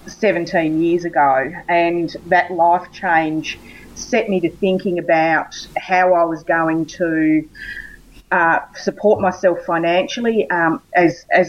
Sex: female